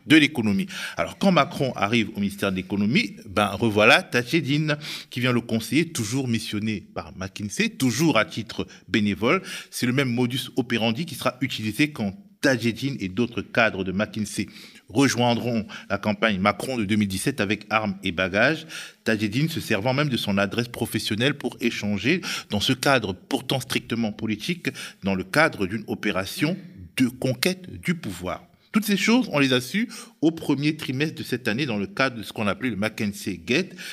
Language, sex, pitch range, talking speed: French, male, 110-160 Hz, 170 wpm